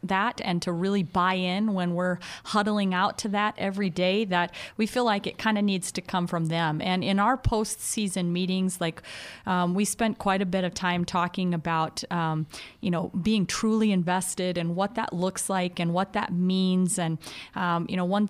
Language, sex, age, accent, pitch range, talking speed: English, female, 30-49, American, 175-195 Hz, 205 wpm